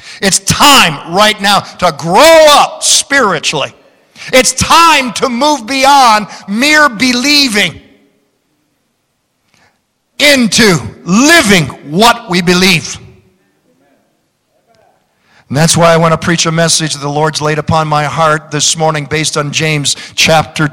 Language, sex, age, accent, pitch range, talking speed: English, male, 50-69, American, 155-220 Hz, 120 wpm